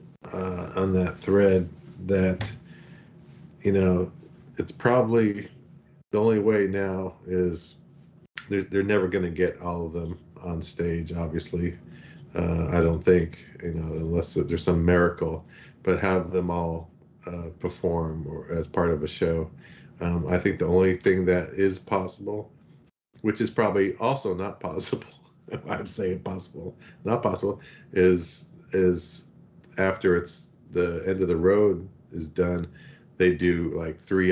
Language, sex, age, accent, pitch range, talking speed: English, male, 50-69, American, 85-95 Hz, 145 wpm